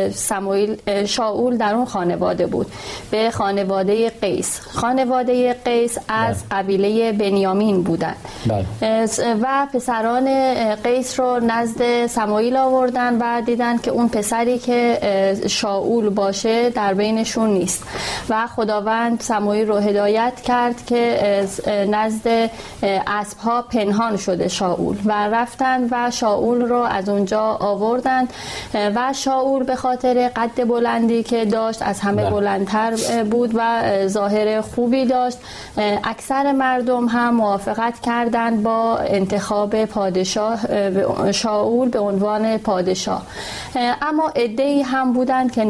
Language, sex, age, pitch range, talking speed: Persian, female, 30-49, 205-245 Hz, 115 wpm